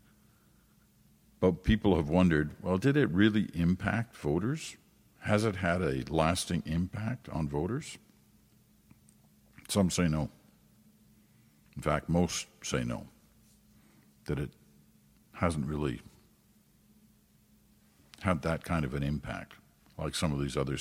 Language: English